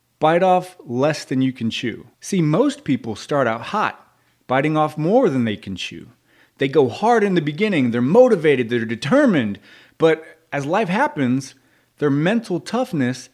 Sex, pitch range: male, 130-190 Hz